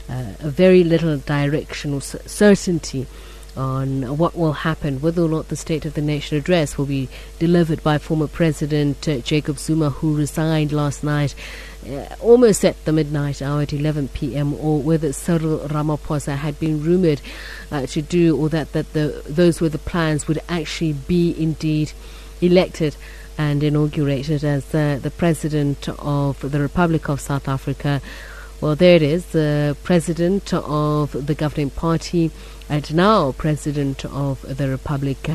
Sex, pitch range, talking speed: female, 135-155 Hz, 160 wpm